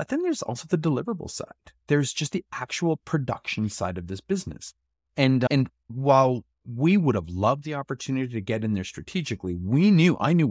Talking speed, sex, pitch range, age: 195 wpm, male, 100-150 Hz, 30-49